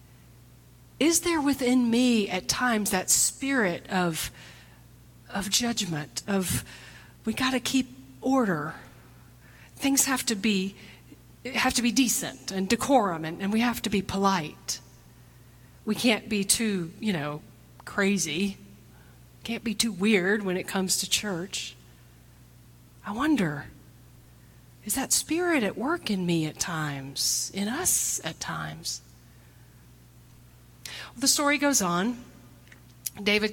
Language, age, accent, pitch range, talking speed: English, 40-59, American, 175-240 Hz, 125 wpm